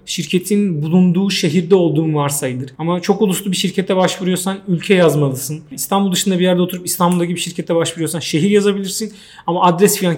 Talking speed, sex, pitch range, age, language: 160 wpm, male, 160-200 Hz, 40-59, Turkish